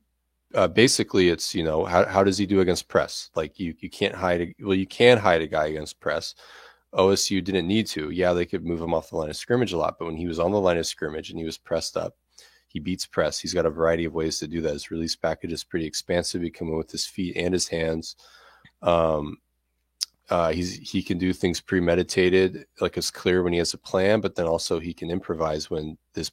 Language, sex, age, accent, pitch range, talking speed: English, male, 20-39, American, 80-95 Hz, 240 wpm